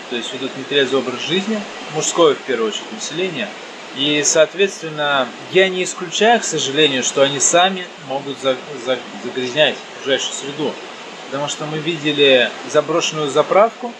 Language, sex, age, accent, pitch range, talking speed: Russian, male, 20-39, native, 135-175 Hz, 135 wpm